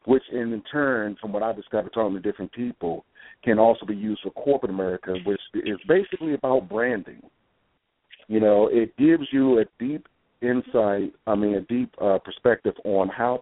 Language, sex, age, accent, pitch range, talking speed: English, male, 50-69, American, 110-135 Hz, 175 wpm